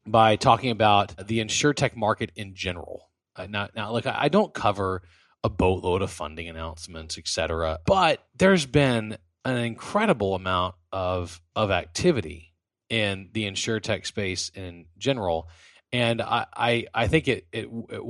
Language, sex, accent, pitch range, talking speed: English, male, American, 95-120 Hz, 155 wpm